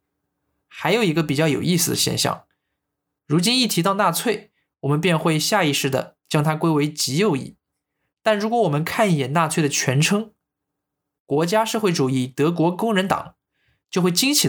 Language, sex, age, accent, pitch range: Chinese, male, 20-39, native, 145-185 Hz